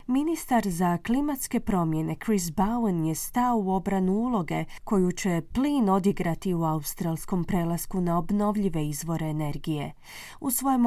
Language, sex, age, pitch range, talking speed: Croatian, female, 30-49, 175-230 Hz, 135 wpm